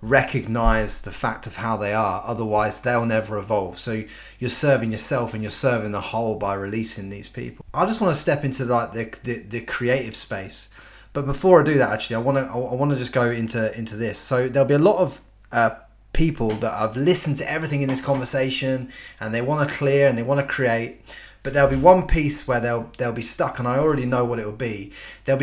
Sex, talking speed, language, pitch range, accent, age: male, 230 wpm, English, 115-140 Hz, British, 30-49